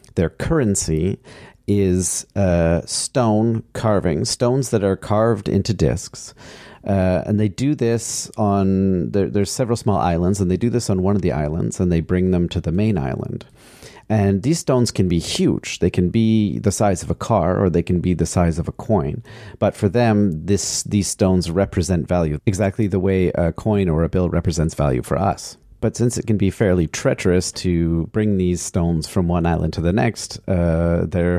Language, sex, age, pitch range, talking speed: English, male, 40-59, 90-110 Hz, 195 wpm